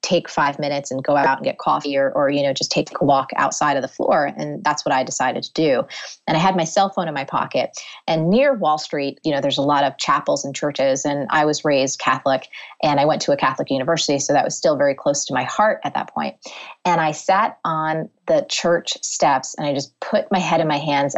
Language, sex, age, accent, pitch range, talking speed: English, female, 30-49, American, 145-180 Hz, 255 wpm